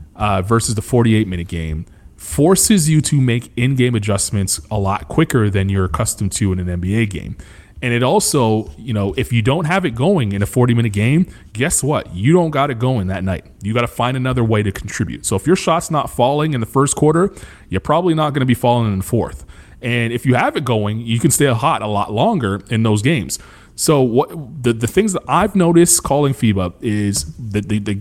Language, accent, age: English, American, 30-49